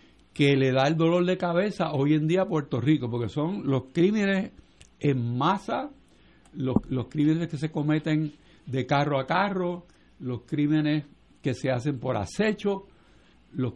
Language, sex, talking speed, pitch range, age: Spanish, male, 160 wpm, 125-180 Hz, 60-79